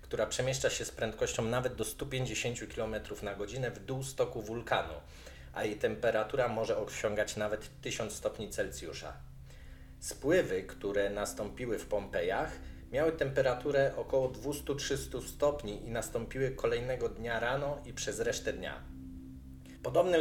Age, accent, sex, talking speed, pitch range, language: 40-59, native, male, 130 wpm, 100-135 Hz, Polish